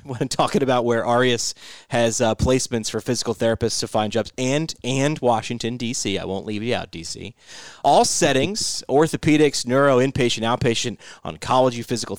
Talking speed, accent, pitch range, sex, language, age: 160 wpm, American, 115-145 Hz, male, English, 30-49